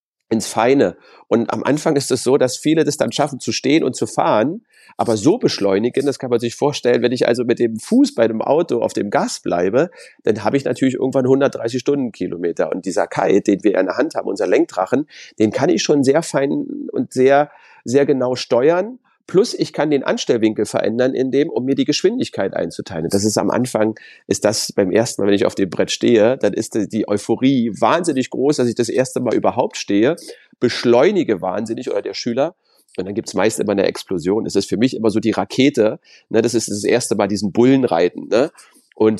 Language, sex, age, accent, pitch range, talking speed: German, male, 40-59, German, 110-150 Hz, 215 wpm